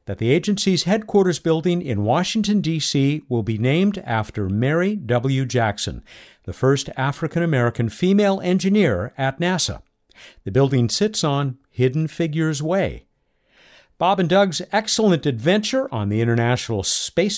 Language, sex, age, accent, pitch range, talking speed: English, male, 50-69, American, 115-180 Hz, 135 wpm